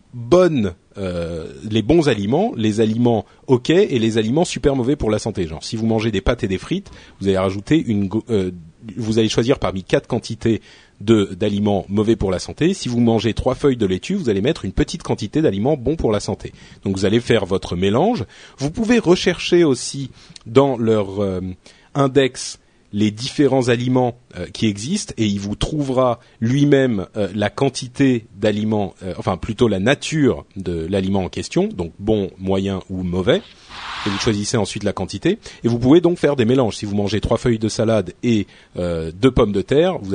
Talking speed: 190 wpm